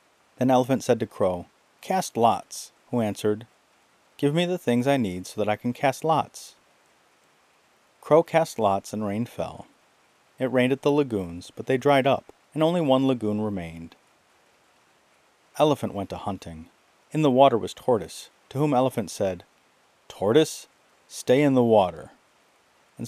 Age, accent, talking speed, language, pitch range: 40-59, American, 155 wpm, English, 100-145 Hz